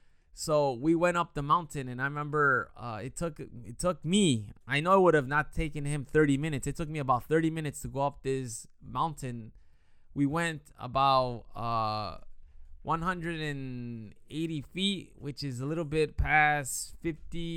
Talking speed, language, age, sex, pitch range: 165 wpm, English, 20-39, male, 120-160 Hz